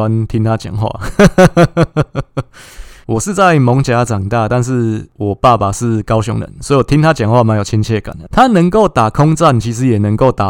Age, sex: 20-39, male